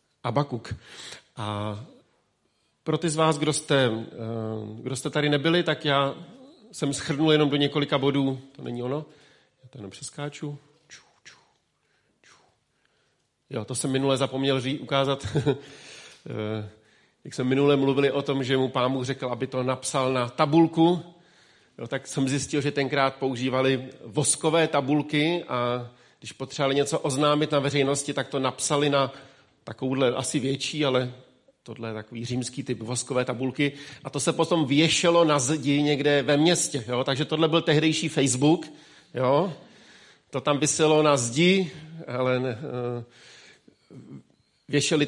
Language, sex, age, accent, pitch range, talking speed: Czech, male, 40-59, native, 125-155 Hz, 140 wpm